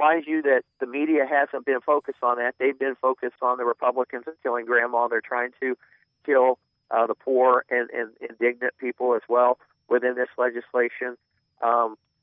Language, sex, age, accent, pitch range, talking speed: English, male, 50-69, American, 125-145 Hz, 175 wpm